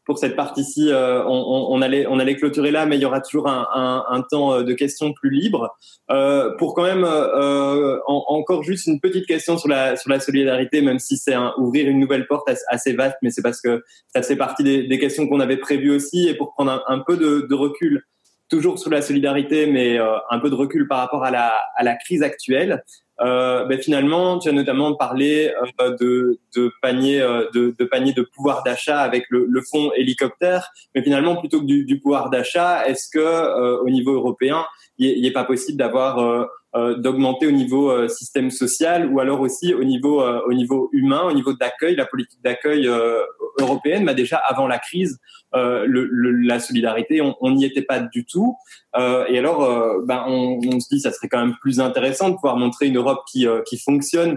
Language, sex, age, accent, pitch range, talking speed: French, male, 20-39, French, 125-150 Hz, 220 wpm